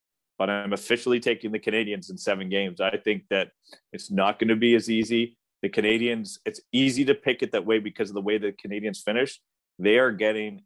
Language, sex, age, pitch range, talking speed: English, male, 30-49, 105-125 Hz, 215 wpm